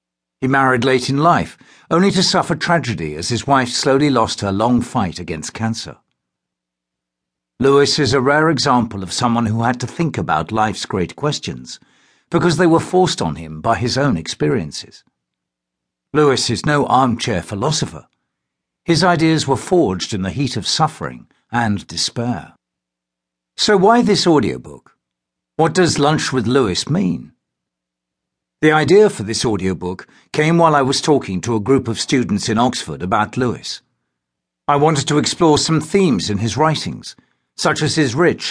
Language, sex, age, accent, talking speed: English, male, 60-79, British, 160 wpm